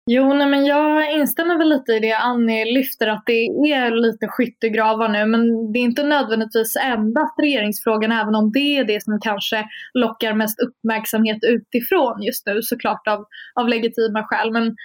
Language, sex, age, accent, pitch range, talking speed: Swedish, female, 20-39, native, 220-260 Hz, 175 wpm